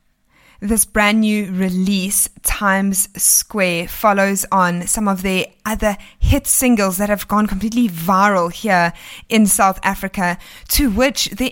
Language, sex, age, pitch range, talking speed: English, female, 20-39, 195-230 Hz, 135 wpm